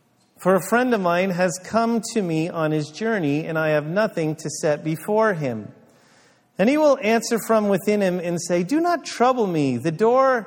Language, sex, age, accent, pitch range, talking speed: English, male, 40-59, American, 130-185 Hz, 200 wpm